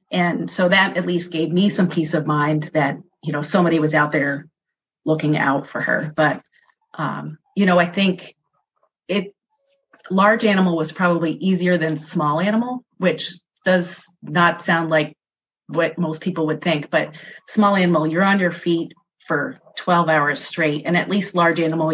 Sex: female